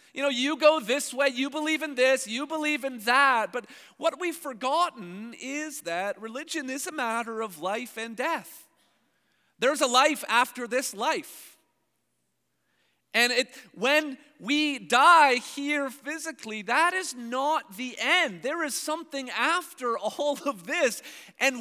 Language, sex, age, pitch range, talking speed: English, male, 40-59, 185-290 Hz, 145 wpm